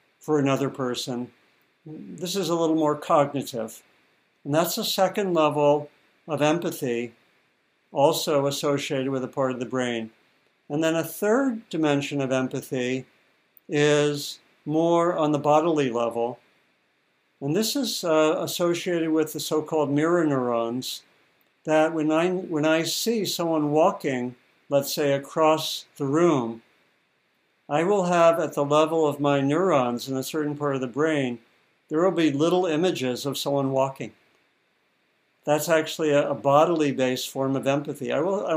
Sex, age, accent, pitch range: male, 60-79, American, 135-160 Hz